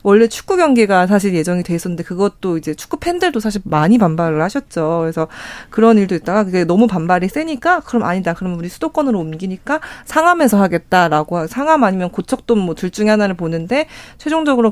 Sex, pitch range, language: female, 180-240 Hz, Korean